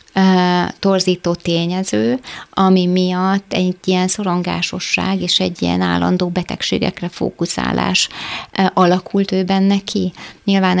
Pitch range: 165-185 Hz